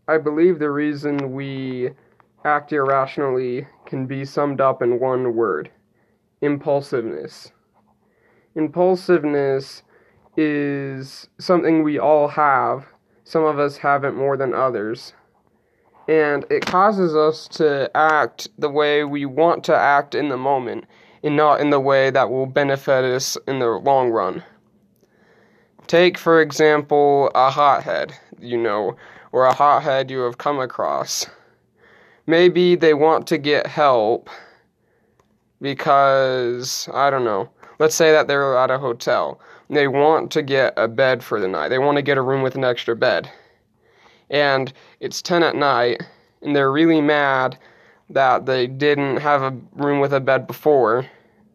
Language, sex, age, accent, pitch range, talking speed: English, male, 20-39, American, 135-150 Hz, 145 wpm